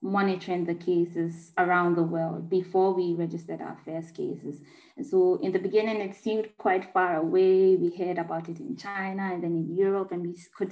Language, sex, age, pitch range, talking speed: English, female, 20-39, 170-195 Hz, 195 wpm